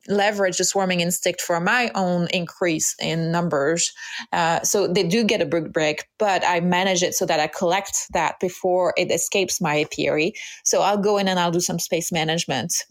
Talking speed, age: 195 wpm, 30-49